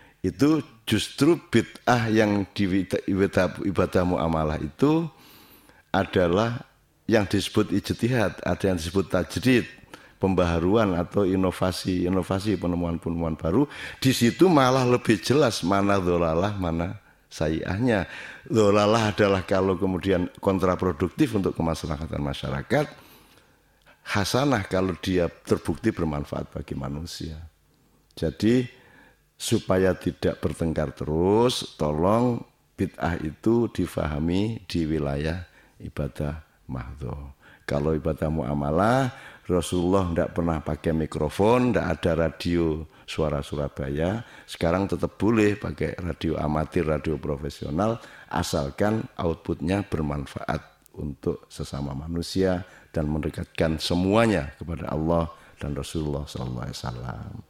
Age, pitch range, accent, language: 50-69, 80-105 Hz, native, Indonesian